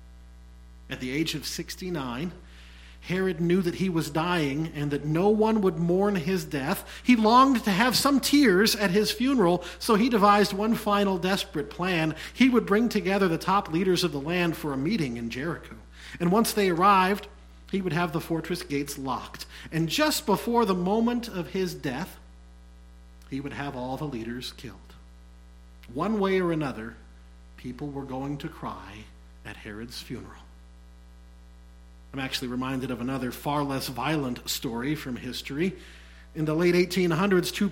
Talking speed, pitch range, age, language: 165 wpm, 125-195 Hz, 40-59, English